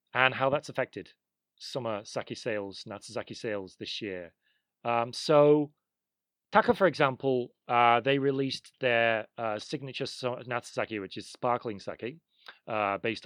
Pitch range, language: 105-140 Hz, English